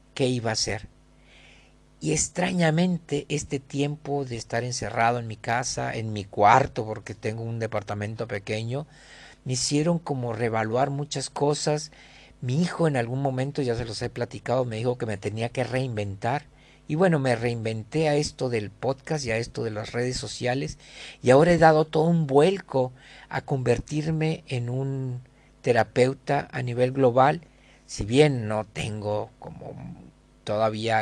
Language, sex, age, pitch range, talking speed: Spanish, male, 50-69, 115-140 Hz, 155 wpm